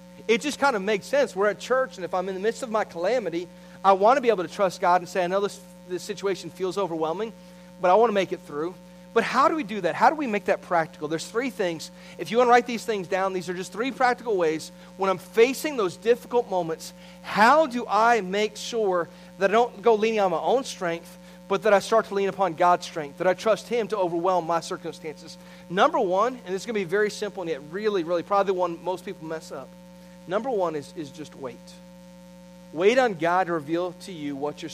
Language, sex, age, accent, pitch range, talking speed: English, male, 40-59, American, 170-200 Hz, 250 wpm